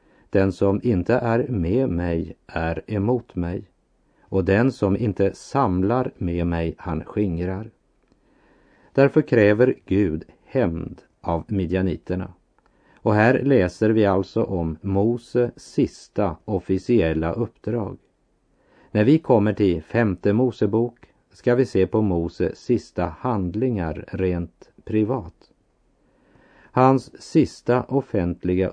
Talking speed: 110 wpm